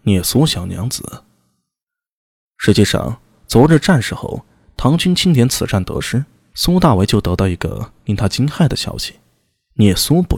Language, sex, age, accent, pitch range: Chinese, male, 20-39, native, 100-150 Hz